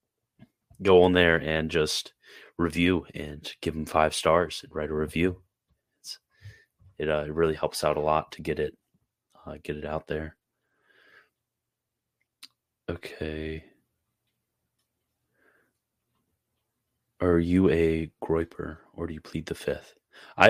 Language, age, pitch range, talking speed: English, 30-49, 75-90 Hz, 130 wpm